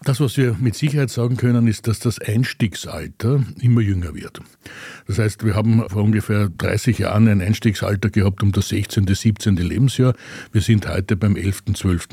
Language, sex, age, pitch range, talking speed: German, male, 60-79, 95-115 Hz, 180 wpm